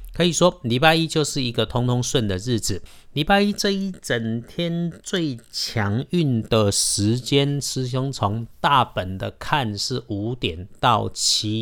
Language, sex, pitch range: Chinese, male, 100-130 Hz